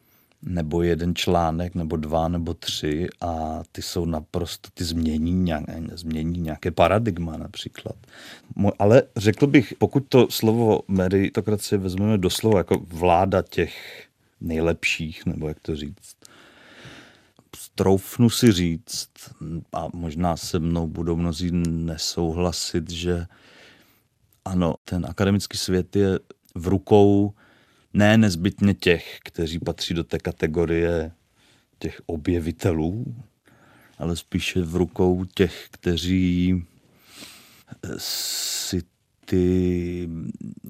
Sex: male